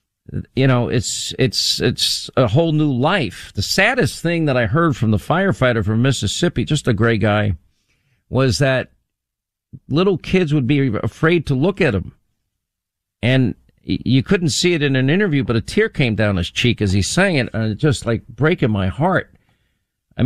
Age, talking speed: 50-69, 185 wpm